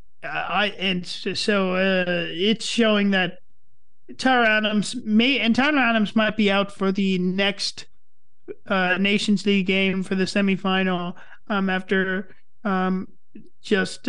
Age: 30-49